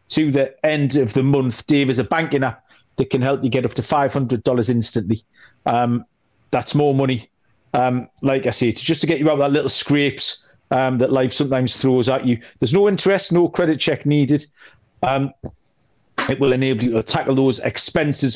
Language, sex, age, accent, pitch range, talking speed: English, male, 40-59, British, 125-155 Hz, 195 wpm